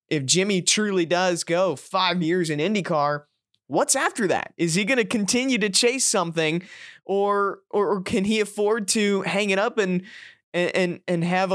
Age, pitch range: 20-39, 150-190 Hz